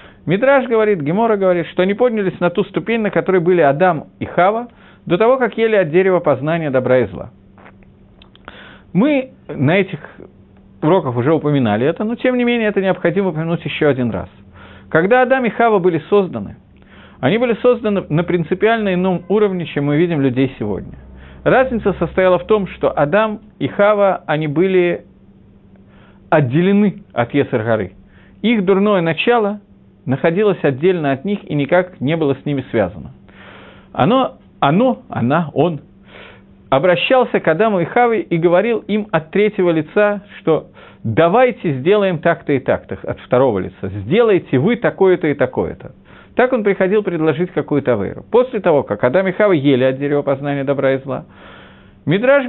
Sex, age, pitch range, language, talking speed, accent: male, 40-59, 140-205 Hz, Russian, 155 wpm, native